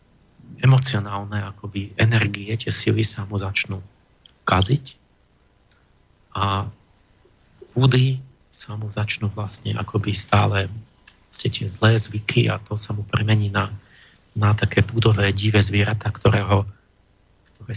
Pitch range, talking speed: 100-110 Hz, 110 wpm